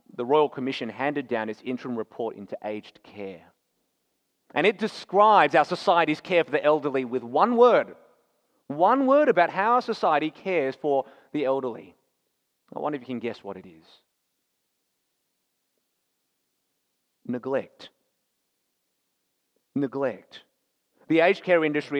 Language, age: English, 30-49